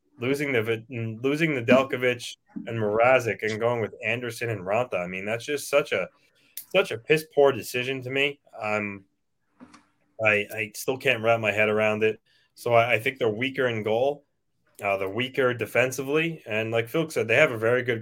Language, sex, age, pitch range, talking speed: English, male, 20-39, 105-135 Hz, 195 wpm